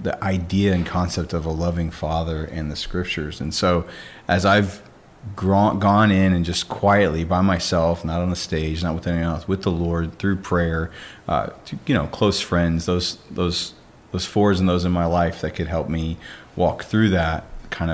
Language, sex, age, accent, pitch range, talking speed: English, male, 30-49, American, 85-95 Hz, 195 wpm